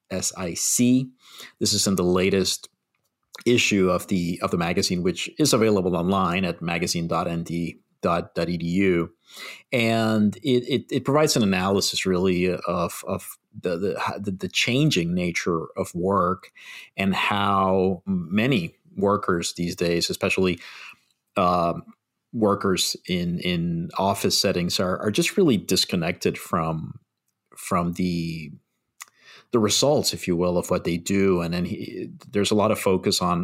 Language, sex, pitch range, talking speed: English, male, 90-115 Hz, 130 wpm